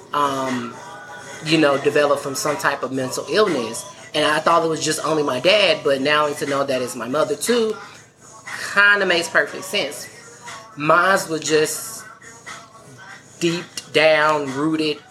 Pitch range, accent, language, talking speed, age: 140-165 Hz, American, English, 155 wpm, 20-39